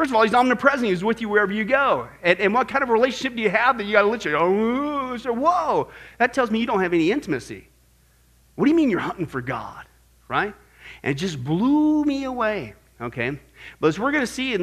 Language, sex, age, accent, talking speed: English, male, 40-59, American, 245 wpm